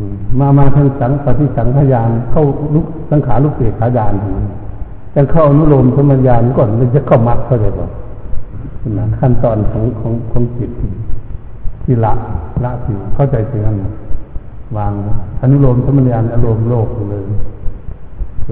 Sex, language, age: male, Thai, 60-79